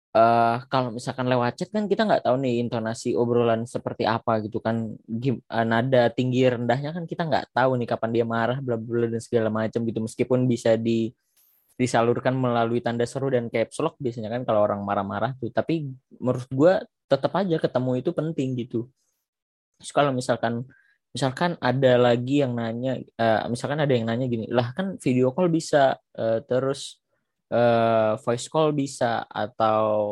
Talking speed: 165 wpm